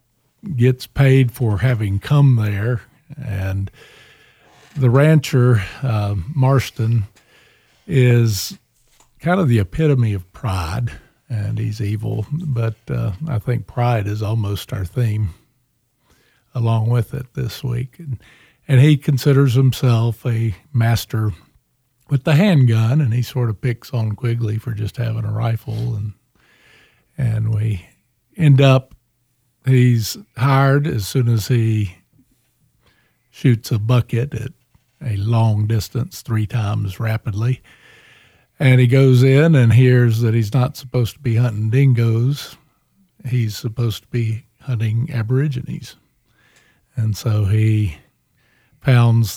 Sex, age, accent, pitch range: male, 50-69, American, 110-130 Hz